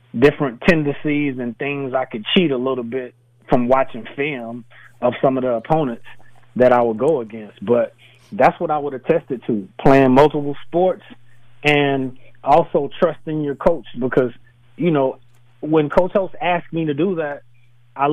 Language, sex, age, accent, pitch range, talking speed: English, male, 30-49, American, 120-150 Hz, 170 wpm